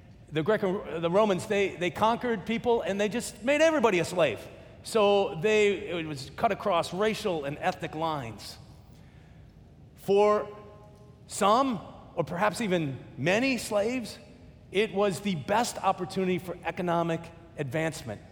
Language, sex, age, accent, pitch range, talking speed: English, male, 40-59, American, 145-210 Hz, 130 wpm